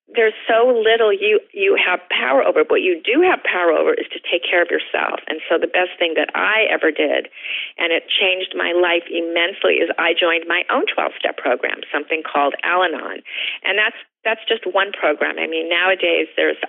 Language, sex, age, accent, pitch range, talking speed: English, female, 40-59, American, 170-225 Hz, 200 wpm